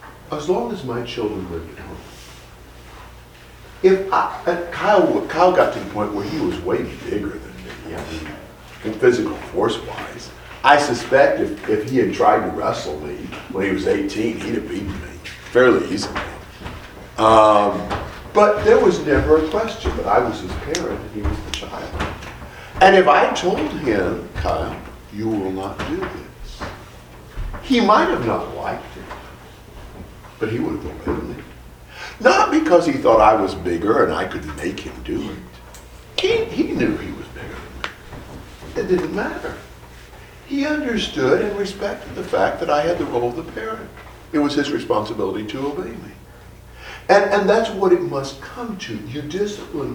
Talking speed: 175 wpm